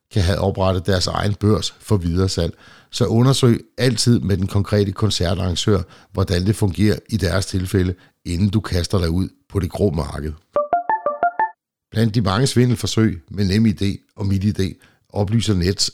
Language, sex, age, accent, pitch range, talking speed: Danish, male, 60-79, native, 95-115 Hz, 160 wpm